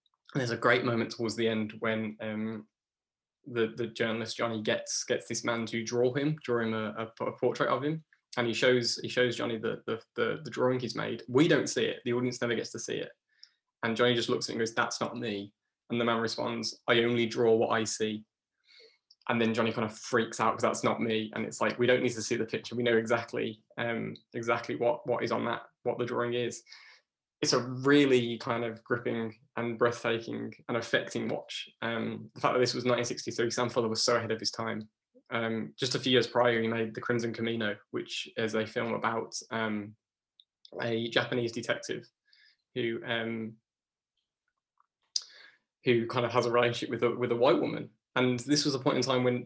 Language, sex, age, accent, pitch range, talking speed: English, male, 10-29, British, 115-125 Hz, 210 wpm